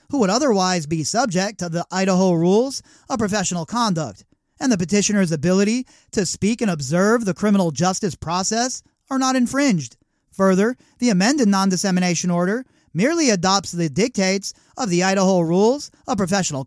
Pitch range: 180-220 Hz